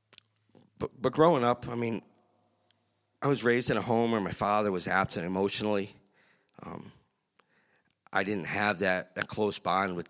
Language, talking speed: English, 155 wpm